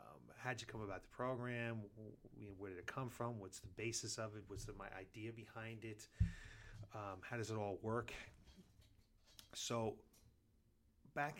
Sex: male